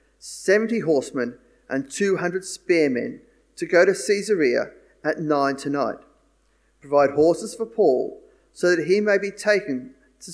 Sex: male